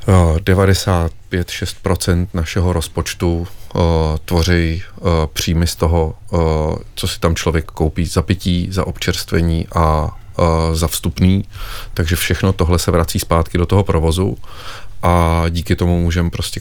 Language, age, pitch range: Czech, 30-49, 85-95 Hz